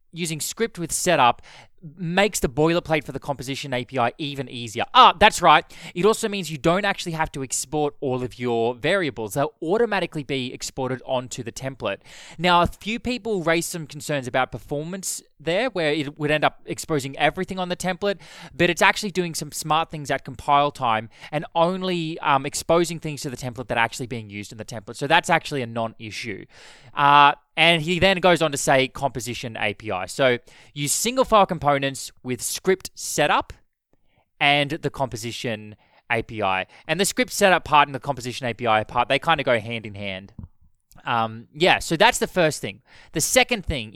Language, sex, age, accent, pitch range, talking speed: English, male, 20-39, Australian, 125-170 Hz, 185 wpm